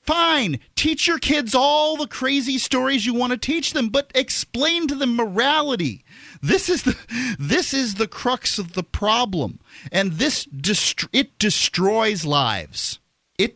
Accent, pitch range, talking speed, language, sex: American, 195-300 Hz, 150 wpm, English, male